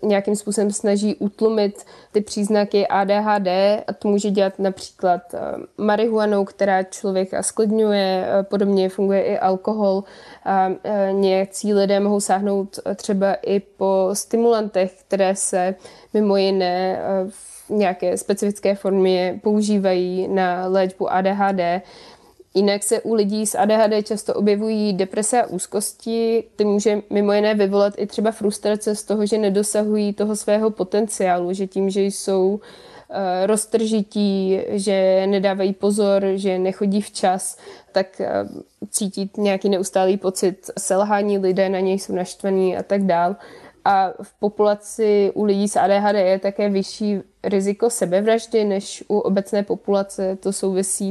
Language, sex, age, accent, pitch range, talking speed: Czech, female, 20-39, native, 195-210 Hz, 125 wpm